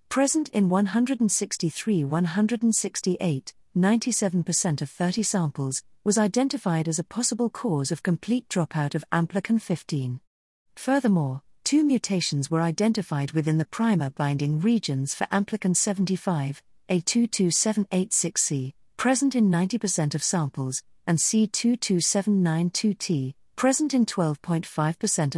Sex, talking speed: female, 95 wpm